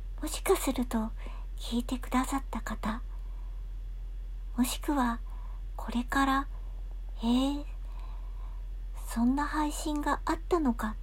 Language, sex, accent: Japanese, male, native